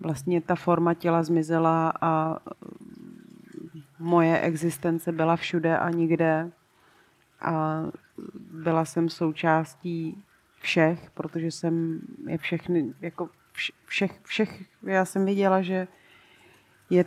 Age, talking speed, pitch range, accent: 30-49, 100 wpm, 165-195 Hz, native